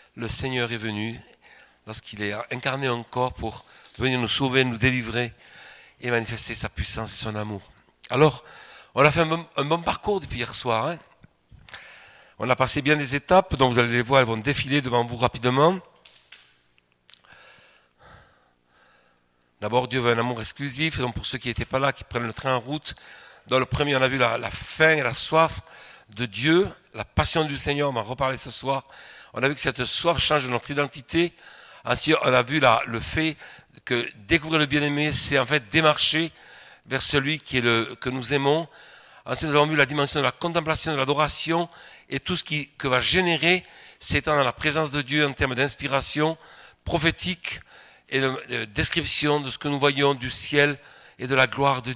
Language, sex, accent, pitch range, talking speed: French, male, French, 120-150 Hz, 195 wpm